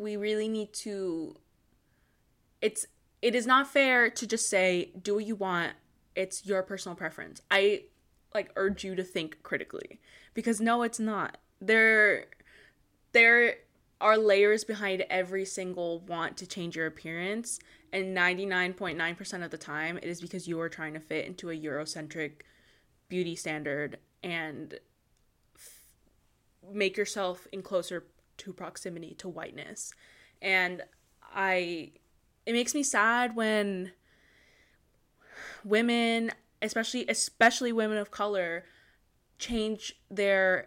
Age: 20-39